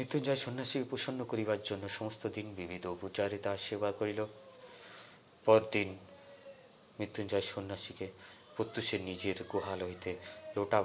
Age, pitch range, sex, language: 30-49, 95-110 Hz, male, Bengali